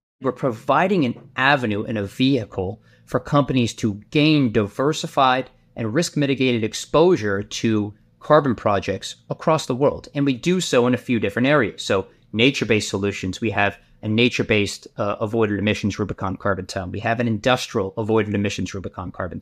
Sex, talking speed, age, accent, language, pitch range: male, 160 wpm, 30-49, American, English, 105-130 Hz